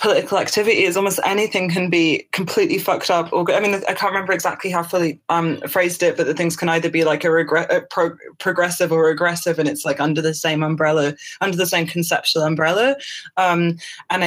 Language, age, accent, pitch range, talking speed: English, 20-39, British, 165-185 Hz, 210 wpm